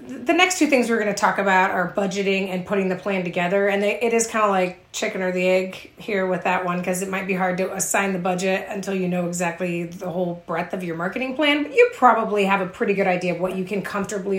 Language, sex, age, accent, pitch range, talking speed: English, female, 30-49, American, 180-215 Hz, 265 wpm